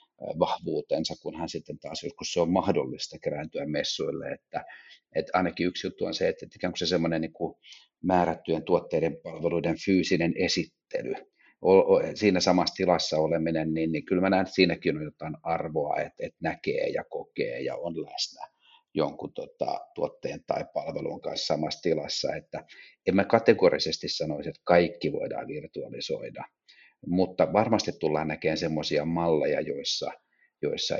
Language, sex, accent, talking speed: Finnish, male, native, 135 wpm